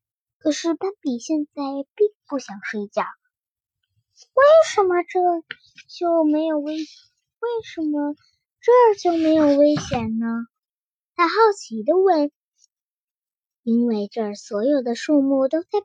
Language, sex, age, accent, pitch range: Chinese, male, 10-29, native, 230-345 Hz